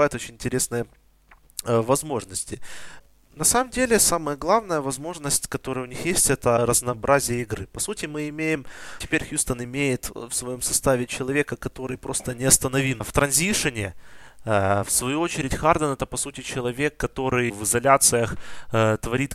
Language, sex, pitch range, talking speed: Russian, male, 115-140 Hz, 145 wpm